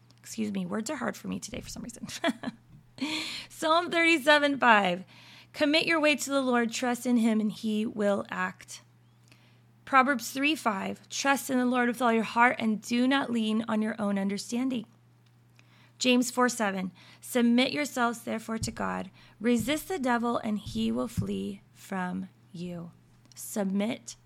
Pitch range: 200-255 Hz